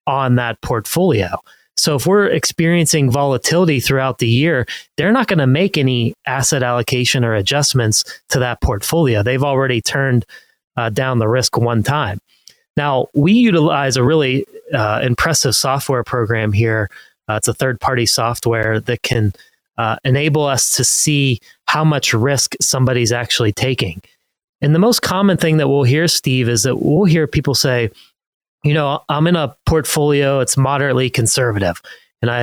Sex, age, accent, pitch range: male, 30-49, American, 120-150 Hz